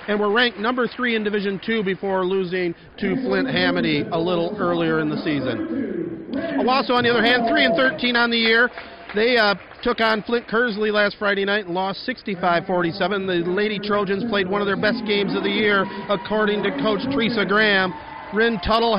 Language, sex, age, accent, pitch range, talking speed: English, male, 40-59, American, 195-235 Hz, 195 wpm